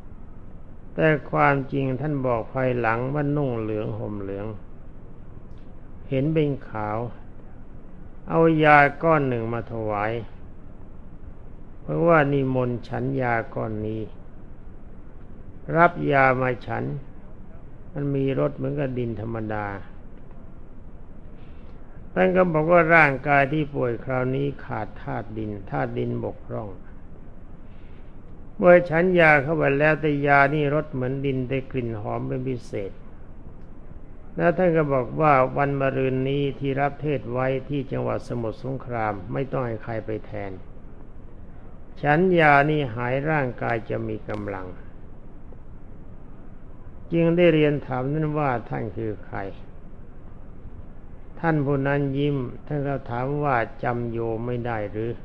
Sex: male